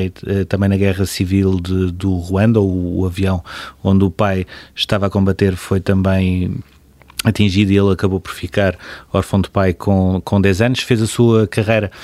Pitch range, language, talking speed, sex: 100-110 Hz, Portuguese, 175 wpm, male